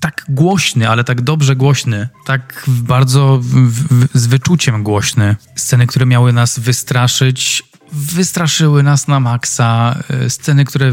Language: Polish